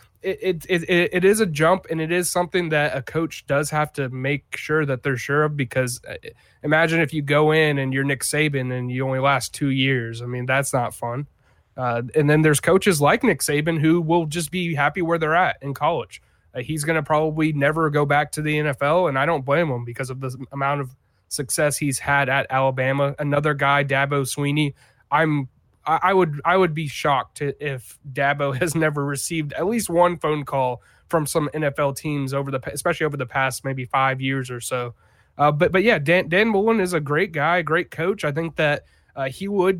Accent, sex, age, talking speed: American, male, 20-39, 215 wpm